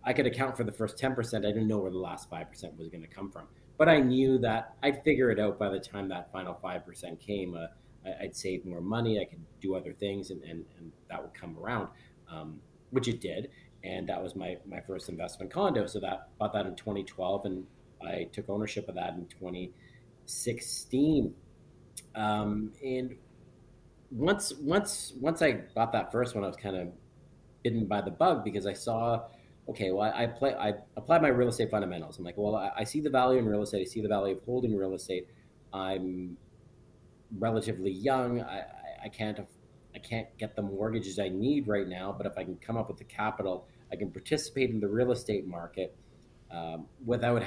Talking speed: 200 wpm